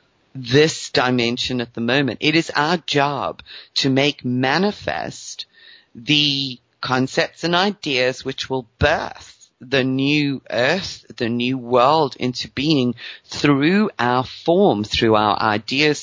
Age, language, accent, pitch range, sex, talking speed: 40-59, English, British, 125-145 Hz, female, 125 wpm